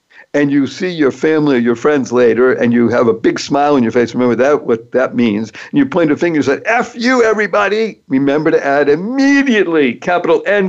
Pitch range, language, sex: 140-195 Hz, English, male